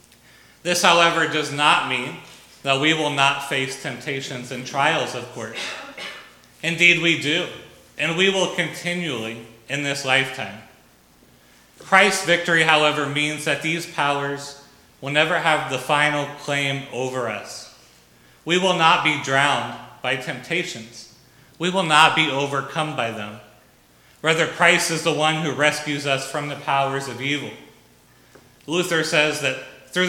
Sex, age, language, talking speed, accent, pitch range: male, 30-49, English, 140 wpm, American, 125-160 Hz